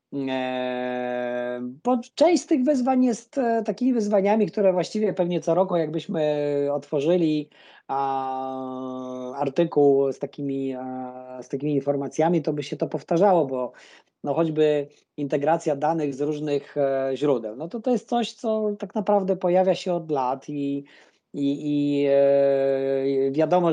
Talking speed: 120 wpm